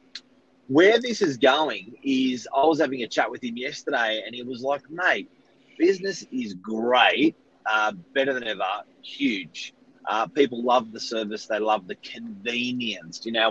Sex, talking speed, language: male, 165 wpm, English